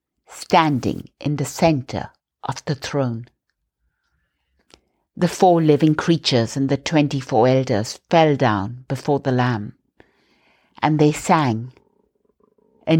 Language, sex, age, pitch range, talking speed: English, female, 60-79, 120-175 Hz, 110 wpm